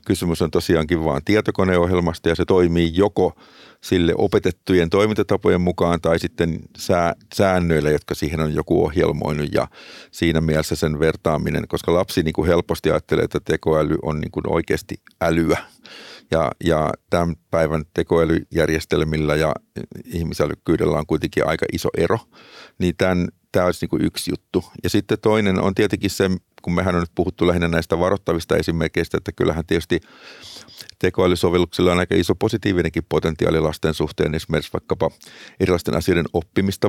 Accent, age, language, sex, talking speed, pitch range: native, 50-69, Finnish, male, 135 wpm, 80-95 Hz